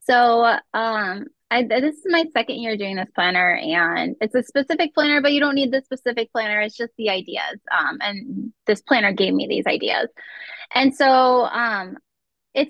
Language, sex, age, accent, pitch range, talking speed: English, female, 10-29, American, 225-305 Hz, 185 wpm